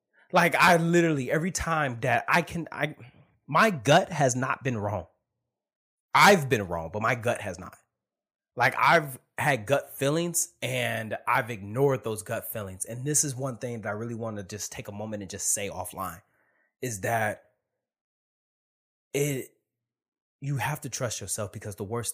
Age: 20-39